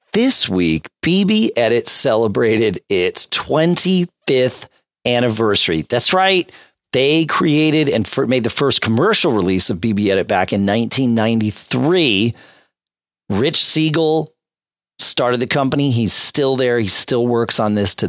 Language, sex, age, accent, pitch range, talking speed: English, male, 40-59, American, 105-165 Hz, 125 wpm